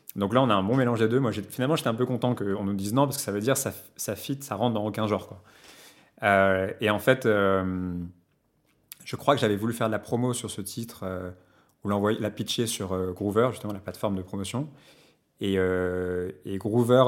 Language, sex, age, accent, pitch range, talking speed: French, male, 30-49, French, 95-115 Hz, 240 wpm